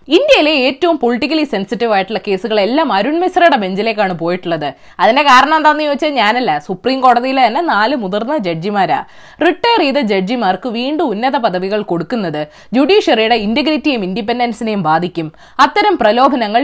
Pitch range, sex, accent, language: 200-320 Hz, female, native, Malayalam